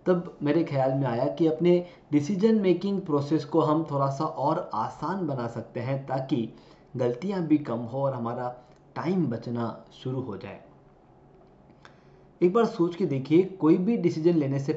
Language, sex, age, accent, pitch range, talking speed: Hindi, male, 20-39, native, 130-180 Hz, 165 wpm